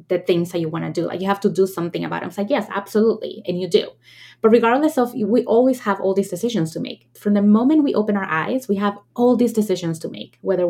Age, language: 20-39, English